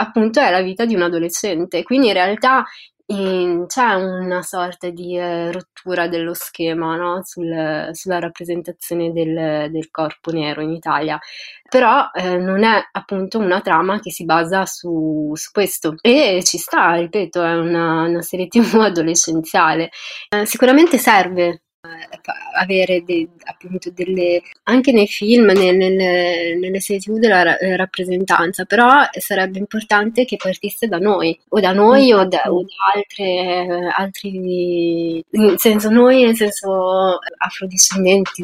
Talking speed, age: 135 wpm, 20-39